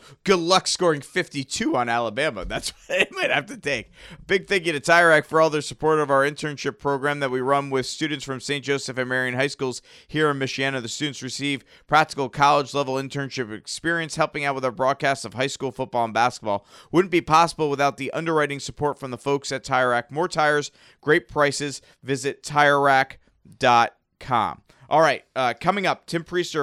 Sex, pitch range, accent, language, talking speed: male, 130-155 Hz, American, English, 190 wpm